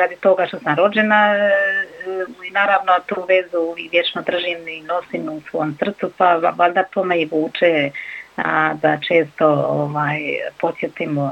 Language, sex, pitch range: Croatian, female, 160-185 Hz